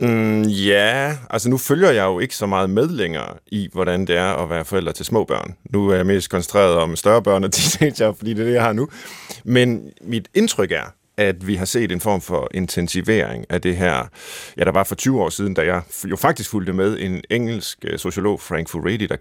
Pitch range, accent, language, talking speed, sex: 90-110 Hz, native, Danish, 230 wpm, male